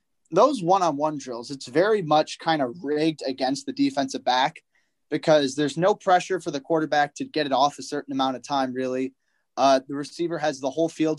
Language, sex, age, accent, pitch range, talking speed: English, male, 20-39, American, 135-165 Hz, 200 wpm